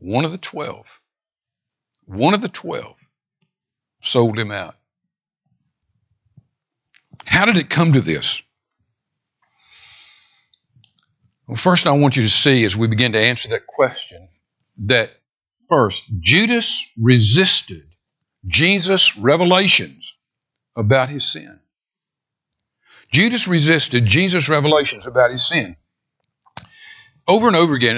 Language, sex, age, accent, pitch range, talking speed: English, male, 60-79, American, 115-160 Hz, 110 wpm